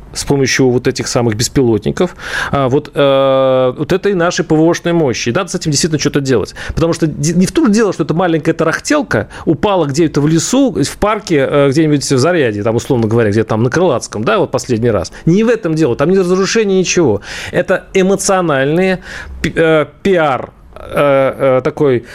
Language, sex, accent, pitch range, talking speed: Russian, male, native, 135-185 Hz, 175 wpm